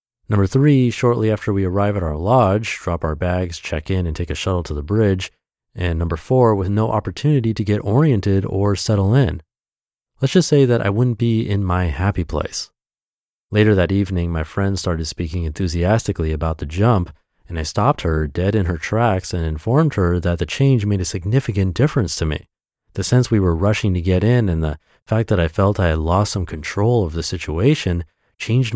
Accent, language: American, English